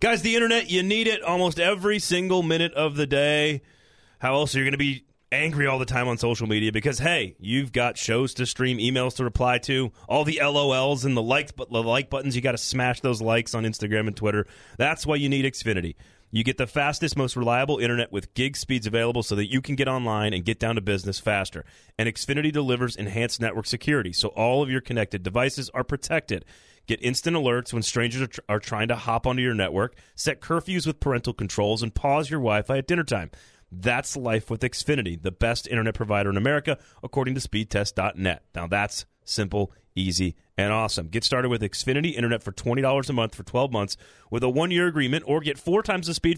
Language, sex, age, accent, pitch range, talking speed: English, male, 30-49, American, 110-145 Hz, 215 wpm